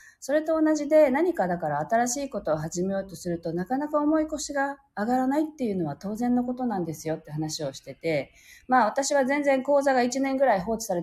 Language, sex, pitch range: Japanese, female, 170-280 Hz